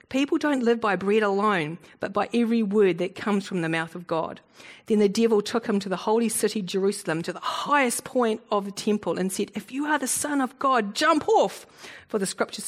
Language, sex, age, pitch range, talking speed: English, female, 40-59, 175-215 Hz, 225 wpm